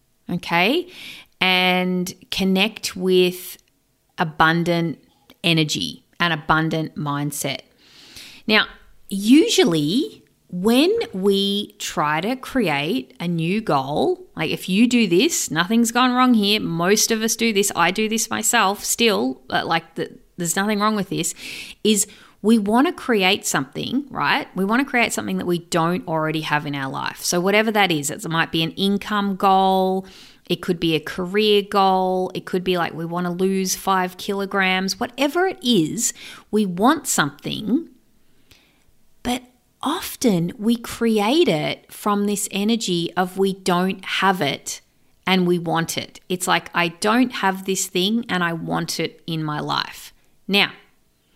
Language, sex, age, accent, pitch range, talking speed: English, female, 30-49, Australian, 170-220 Hz, 150 wpm